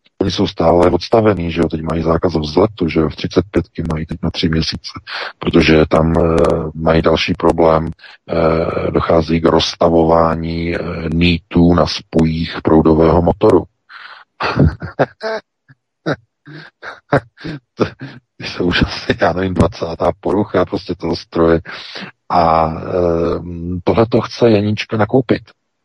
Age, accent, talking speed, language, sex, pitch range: 40-59, native, 120 wpm, Czech, male, 85-105 Hz